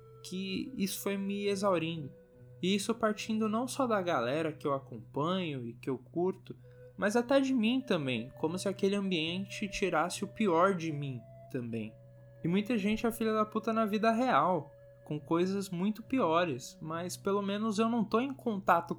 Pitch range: 135-210 Hz